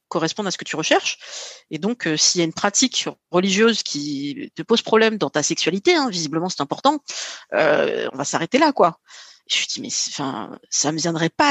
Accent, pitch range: French, 180-250 Hz